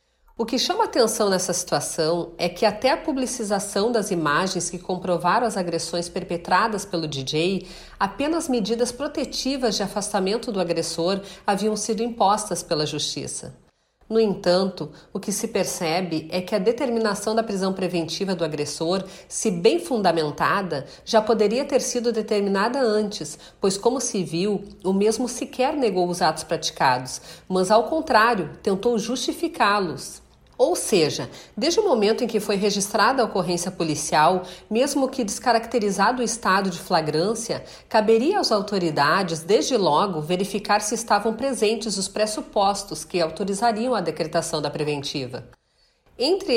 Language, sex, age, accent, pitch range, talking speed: Portuguese, female, 40-59, Brazilian, 175-225 Hz, 140 wpm